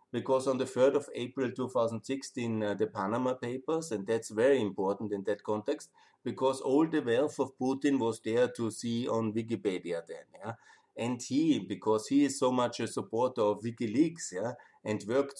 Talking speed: 170 wpm